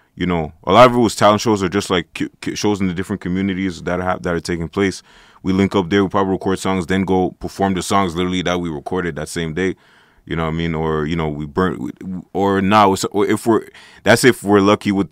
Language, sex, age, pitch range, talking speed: English, male, 20-39, 80-95 Hz, 260 wpm